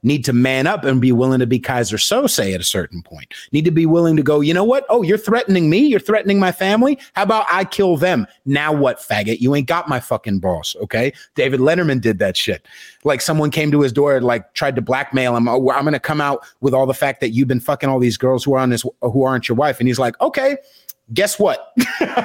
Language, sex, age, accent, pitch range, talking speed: English, male, 30-49, American, 130-180 Hz, 260 wpm